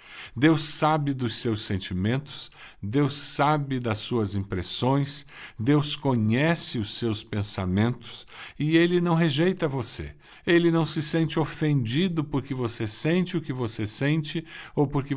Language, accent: Portuguese, Brazilian